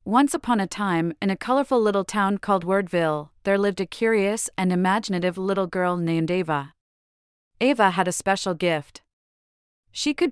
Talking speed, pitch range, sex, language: 165 wpm, 170-210 Hz, female, English